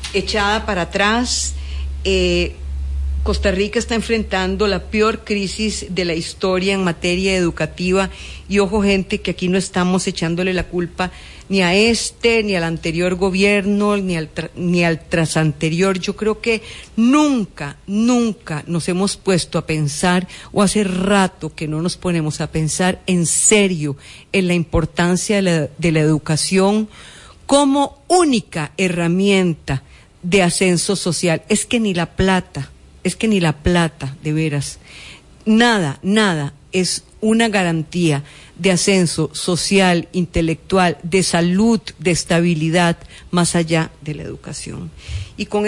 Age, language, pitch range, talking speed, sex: 40-59, English, 160-200 Hz, 140 wpm, female